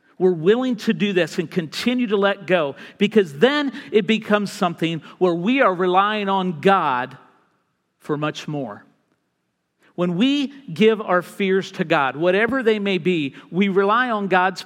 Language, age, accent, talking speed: English, 50-69, American, 160 wpm